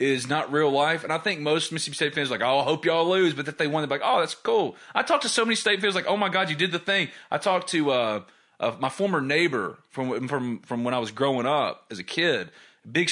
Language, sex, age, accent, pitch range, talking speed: English, male, 30-49, American, 140-200 Hz, 285 wpm